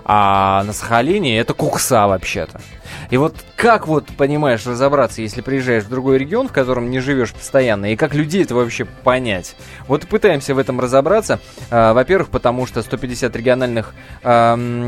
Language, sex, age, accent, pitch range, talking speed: Russian, male, 20-39, native, 120-155 Hz, 165 wpm